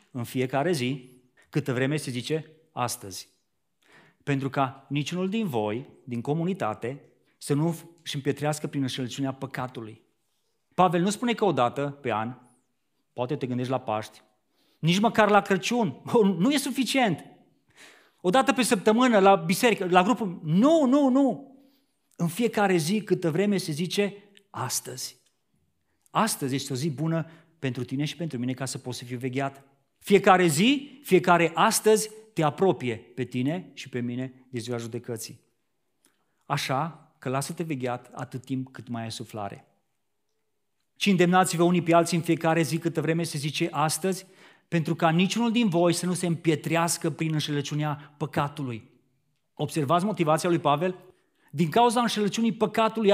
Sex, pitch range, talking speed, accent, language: male, 130-195 Hz, 150 wpm, native, Romanian